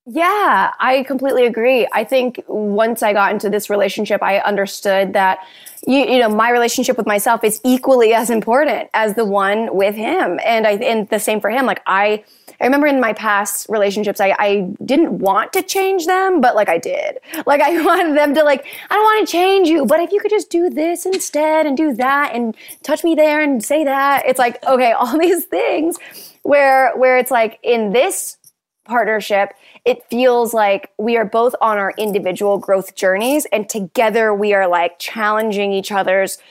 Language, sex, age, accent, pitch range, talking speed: English, female, 20-39, American, 205-285 Hz, 195 wpm